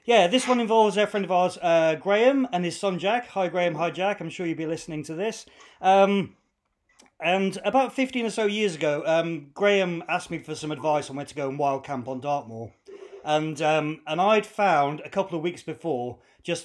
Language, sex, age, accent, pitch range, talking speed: English, male, 30-49, British, 145-180 Hz, 215 wpm